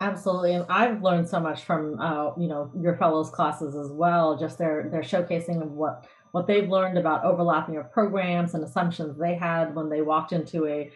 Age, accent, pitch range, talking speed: 30-49, American, 155-185 Hz, 205 wpm